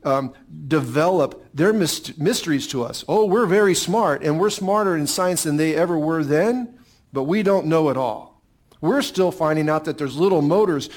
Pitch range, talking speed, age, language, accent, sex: 145-195 Hz, 190 wpm, 50-69, English, American, male